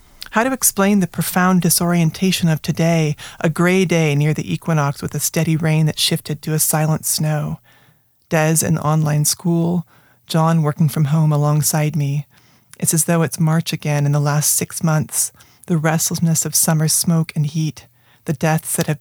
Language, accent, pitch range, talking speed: English, American, 140-165 Hz, 175 wpm